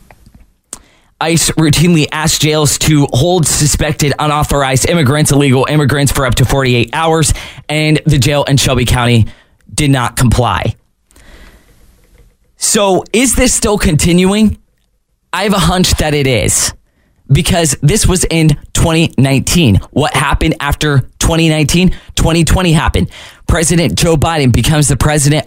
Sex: male